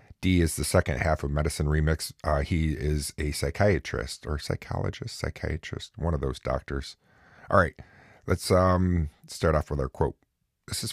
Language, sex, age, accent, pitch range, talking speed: English, male, 40-59, American, 70-85 Hz, 170 wpm